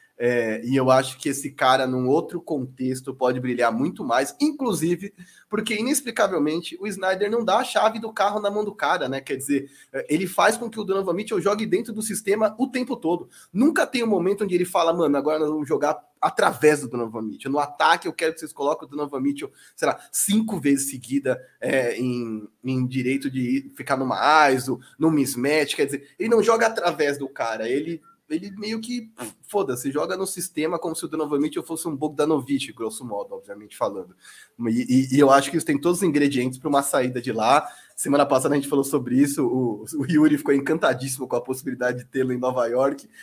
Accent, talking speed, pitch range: Brazilian, 215 wpm, 130-190 Hz